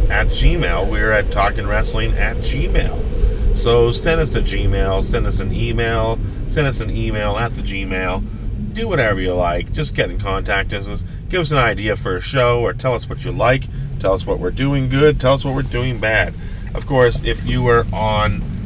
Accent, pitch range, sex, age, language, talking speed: American, 95-115 Hz, male, 30-49, English, 210 wpm